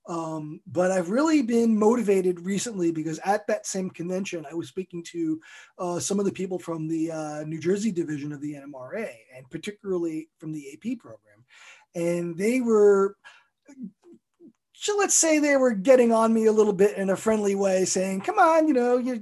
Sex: male